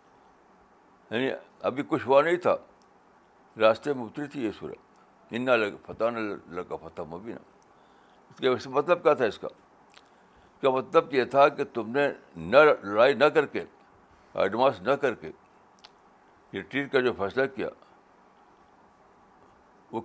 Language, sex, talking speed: Urdu, male, 155 wpm